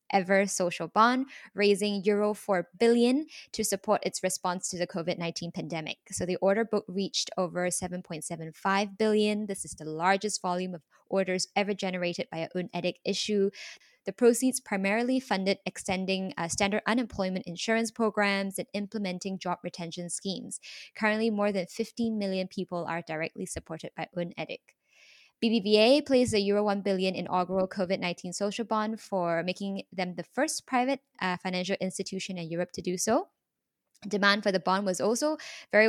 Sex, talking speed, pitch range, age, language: female, 155 wpm, 180-215 Hz, 10-29, English